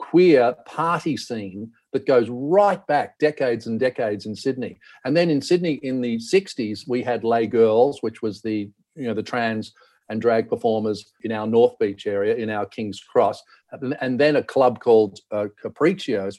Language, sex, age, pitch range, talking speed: English, male, 50-69, 110-150 Hz, 180 wpm